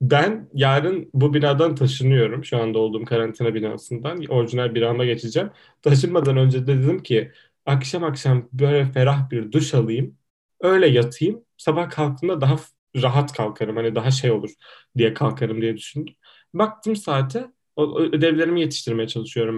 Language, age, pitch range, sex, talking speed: Turkish, 10-29, 120-155 Hz, male, 140 wpm